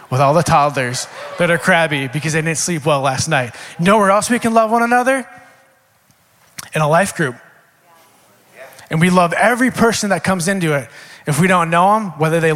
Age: 20-39